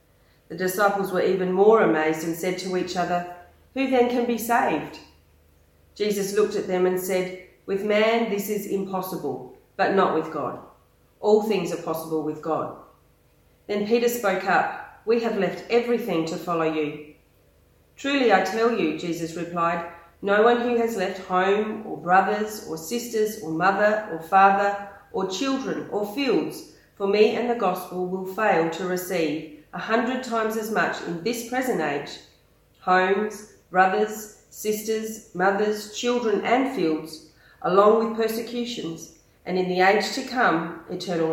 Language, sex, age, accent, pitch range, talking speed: English, female, 40-59, Australian, 170-220 Hz, 155 wpm